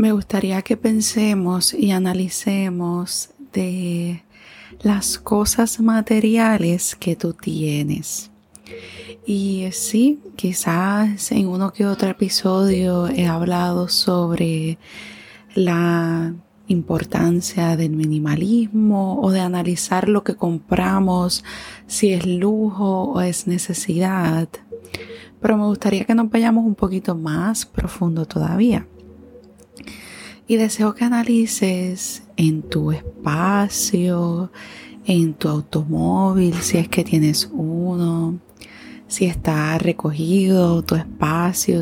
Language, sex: Spanish, female